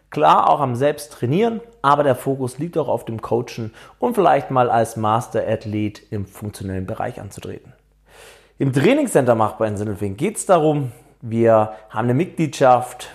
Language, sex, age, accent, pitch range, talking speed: German, male, 30-49, German, 115-155 Hz, 155 wpm